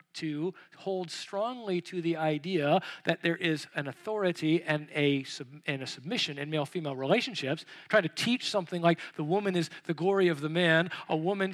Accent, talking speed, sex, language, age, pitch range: American, 170 wpm, male, English, 40-59, 155-200 Hz